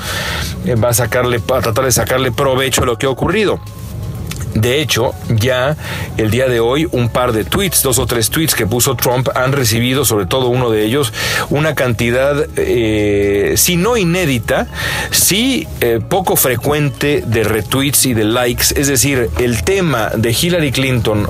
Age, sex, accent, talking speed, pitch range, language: 40-59, male, Mexican, 170 wpm, 115-140 Hz, Spanish